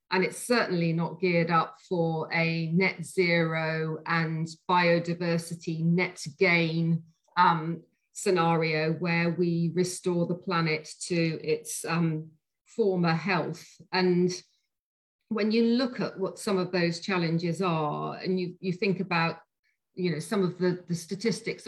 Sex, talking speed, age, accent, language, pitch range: female, 135 wpm, 40-59, British, English, 165-185 Hz